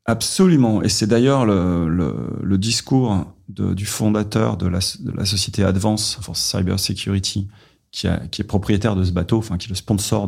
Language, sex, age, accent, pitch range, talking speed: French, male, 40-59, French, 95-115 Hz, 195 wpm